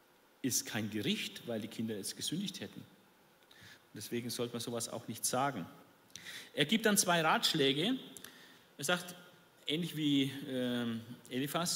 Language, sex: German, male